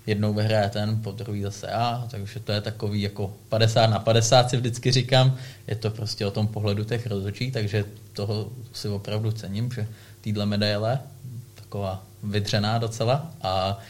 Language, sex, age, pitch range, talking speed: Czech, male, 20-39, 105-115 Hz, 165 wpm